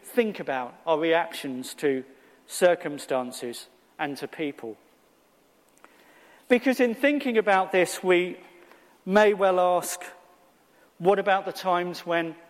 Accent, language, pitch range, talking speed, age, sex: British, English, 165-200 Hz, 110 wpm, 40-59, male